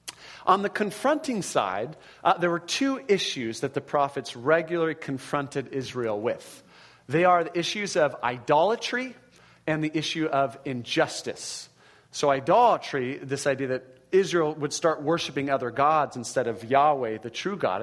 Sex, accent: male, American